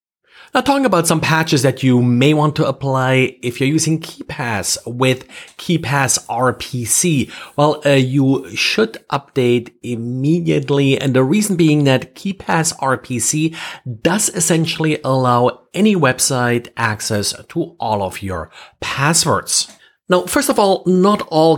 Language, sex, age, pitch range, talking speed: English, male, 30-49, 120-155 Hz, 135 wpm